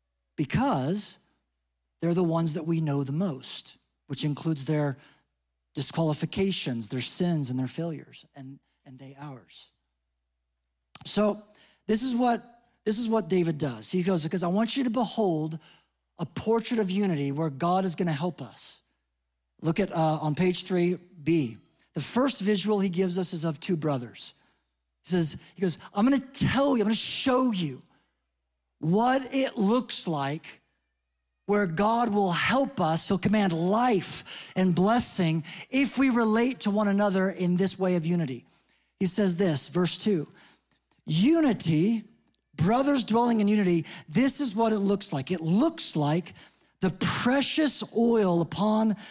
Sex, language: male, English